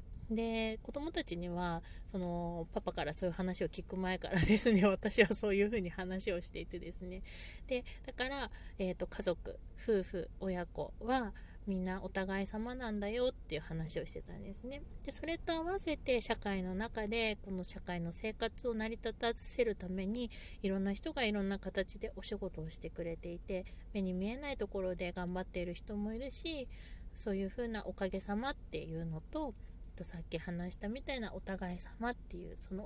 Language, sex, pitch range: Japanese, female, 175-225 Hz